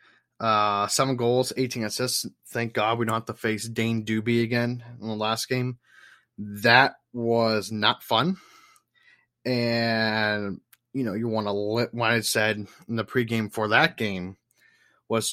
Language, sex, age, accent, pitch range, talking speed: English, male, 20-39, American, 110-125 Hz, 155 wpm